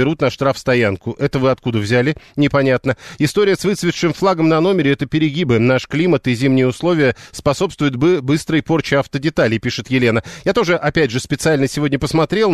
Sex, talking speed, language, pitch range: male, 170 wpm, Russian, 125-160 Hz